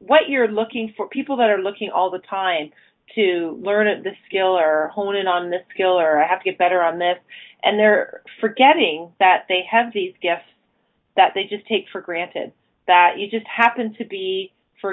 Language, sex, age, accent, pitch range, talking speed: English, female, 30-49, American, 175-215 Hz, 200 wpm